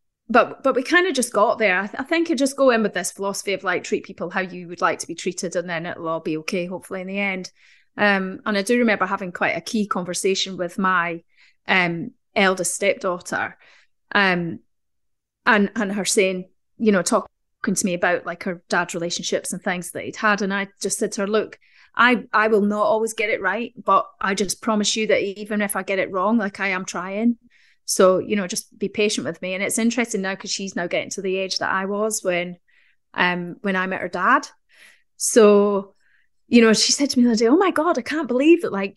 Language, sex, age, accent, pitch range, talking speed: English, female, 30-49, British, 190-235 Hz, 235 wpm